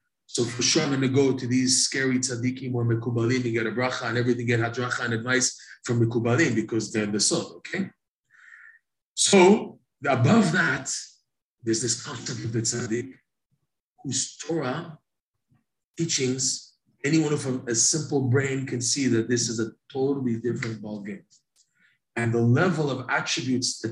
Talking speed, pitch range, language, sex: 160 wpm, 120-145 Hz, English, male